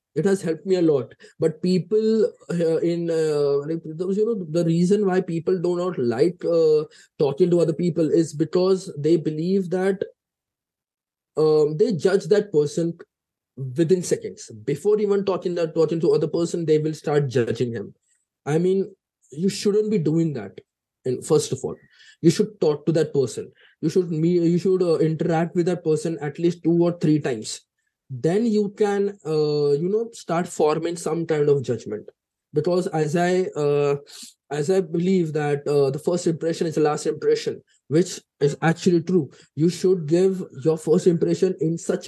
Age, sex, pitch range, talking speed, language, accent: 20-39, male, 150-185 Hz, 175 wpm, English, Indian